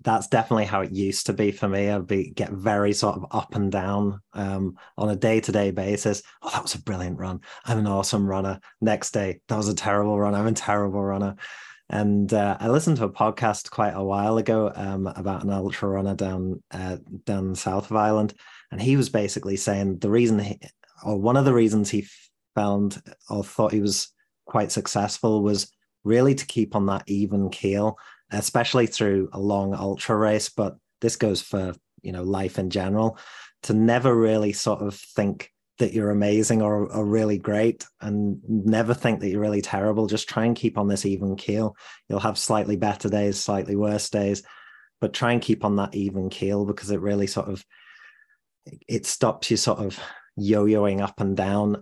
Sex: male